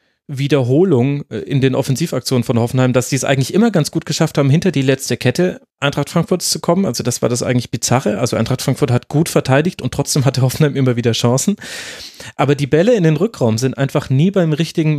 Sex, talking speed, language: male, 210 wpm, German